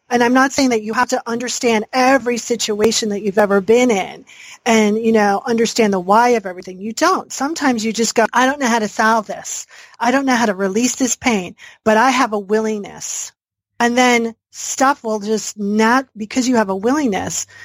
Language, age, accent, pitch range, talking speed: English, 40-59, American, 210-255 Hz, 205 wpm